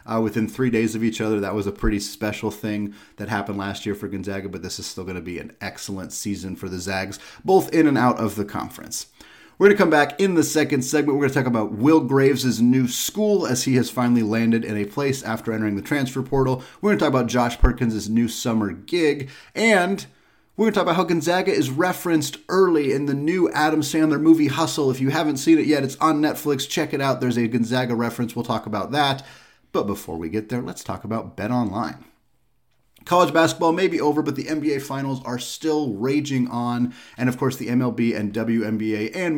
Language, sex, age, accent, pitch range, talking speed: English, male, 30-49, American, 110-150 Hz, 225 wpm